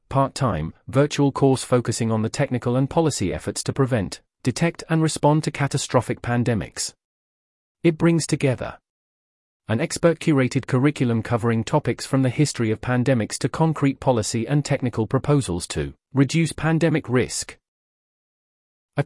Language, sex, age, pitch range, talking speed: English, male, 40-59, 110-145 Hz, 130 wpm